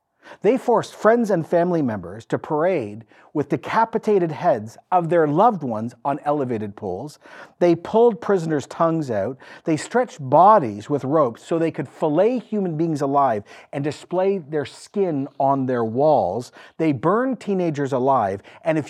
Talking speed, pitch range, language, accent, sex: 150 wpm, 135-190 Hz, English, American, male